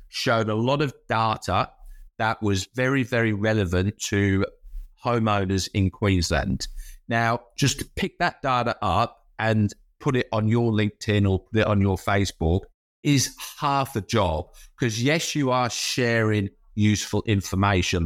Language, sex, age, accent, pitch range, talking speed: English, male, 50-69, British, 100-125 Hz, 140 wpm